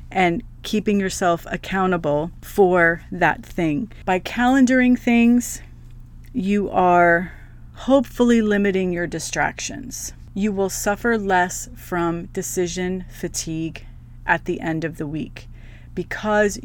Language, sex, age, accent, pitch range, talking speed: English, female, 40-59, American, 170-210 Hz, 110 wpm